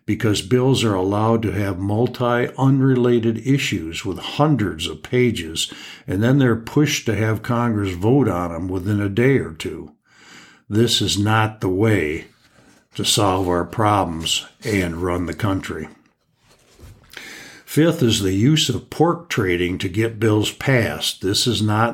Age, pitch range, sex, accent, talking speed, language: 60-79, 95-120 Hz, male, American, 150 wpm, English